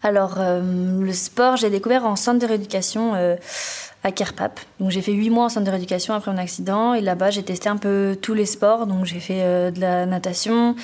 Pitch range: 185-220 Hz